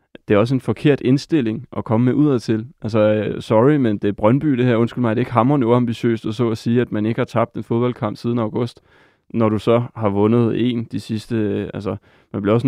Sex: male